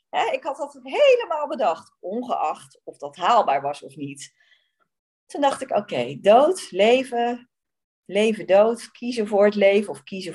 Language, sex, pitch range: Dutch, female, 170-265 Hz